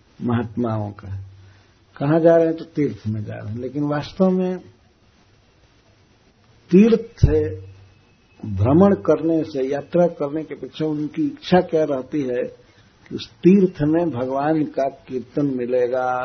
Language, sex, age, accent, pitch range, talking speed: Hindi, male, 60-79, native, 105-150 Hz, 135 wpm